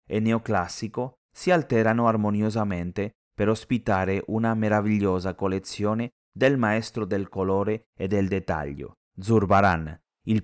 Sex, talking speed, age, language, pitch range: male, 110 wpm, 30-49, Italian, 95-115 Hz